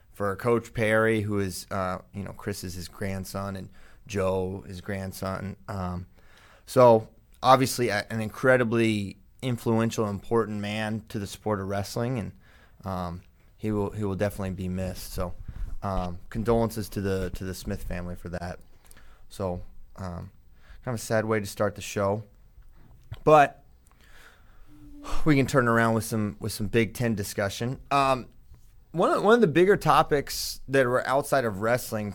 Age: 30-49